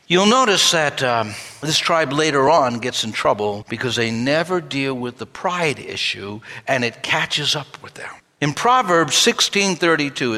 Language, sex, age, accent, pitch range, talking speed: English, male, 60-79, American, 150-215 Hz, 160 wpm